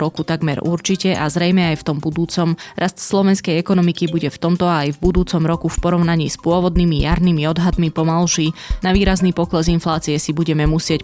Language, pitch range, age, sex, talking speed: Slovak, 160-180 Hz, 20-39, female, 185 wpm